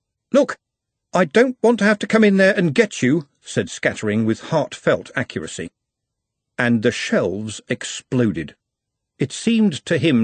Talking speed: 150 wpm